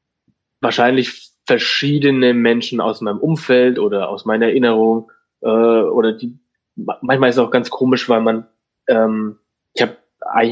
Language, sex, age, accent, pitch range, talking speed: German, male, 20-39, German, 115-130 Hz, 145 wpm